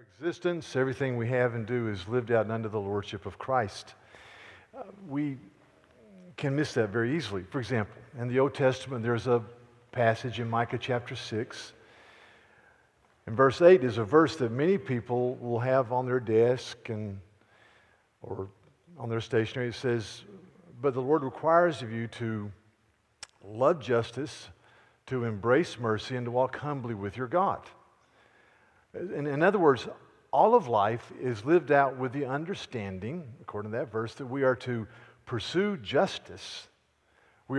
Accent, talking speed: American, 160 wpm